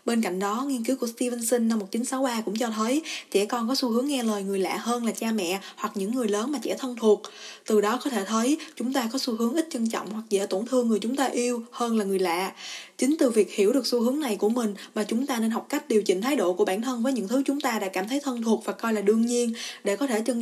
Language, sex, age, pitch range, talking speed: Vietnamese, female, 20-39, 210-260 Hz, 295 wpm